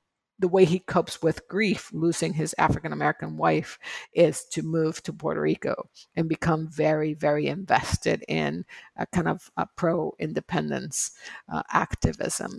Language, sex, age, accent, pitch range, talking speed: English, female, 50-69, American, 145-200 Hz, 145 wpm